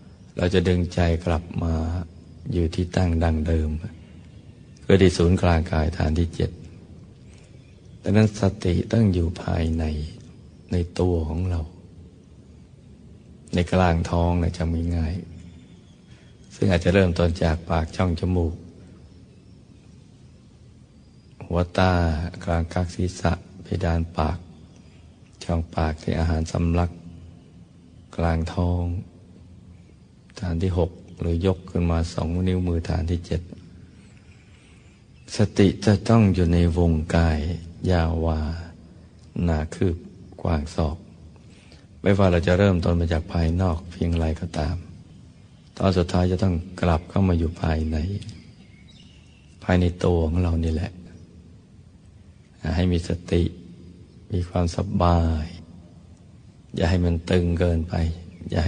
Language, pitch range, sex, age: Thai, 85-90 Hz, male, 60-79